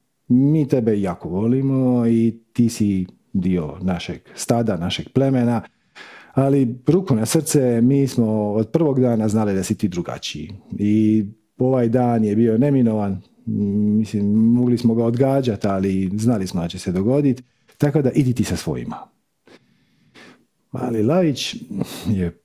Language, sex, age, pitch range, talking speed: Croatian, male, 40-59, 105-140 Hz, 140 wpm